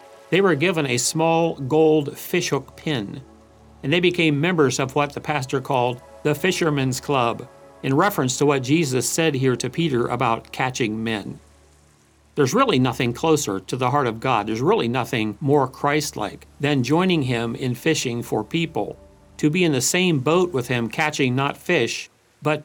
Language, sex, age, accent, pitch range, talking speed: English, male, 50-69, American, 115-155 Hz, 170 wpm